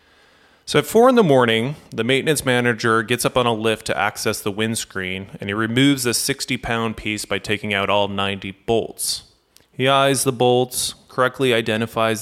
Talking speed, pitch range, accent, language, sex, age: 180 wpm, 110-130 Hz, American, English, male, 20-39